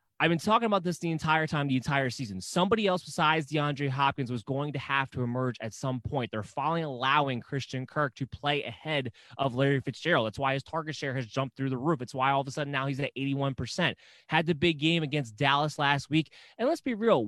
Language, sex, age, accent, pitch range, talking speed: English, male, 20-39, American, 130-160 Hz, 235 wpm